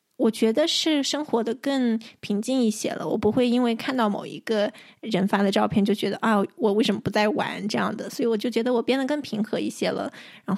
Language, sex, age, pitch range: Chinese, female, 20-39, 205-250 Hz